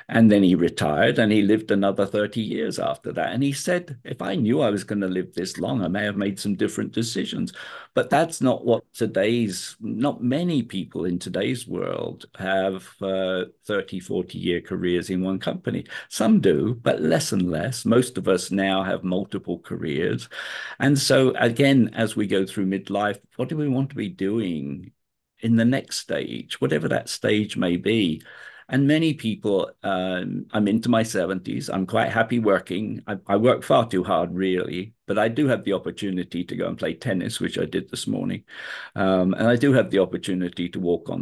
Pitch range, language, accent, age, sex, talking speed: 95-115 Hz, English, British, 50-69, male, 195 wpm